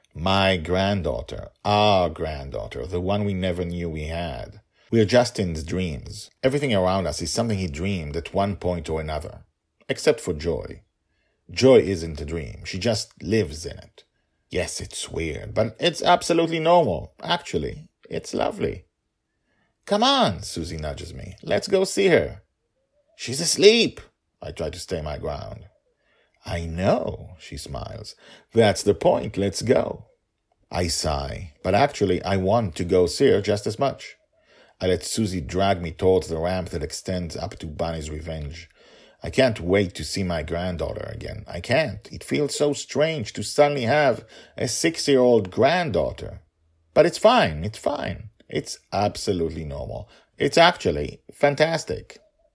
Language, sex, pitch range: English, male, 85-110 Hz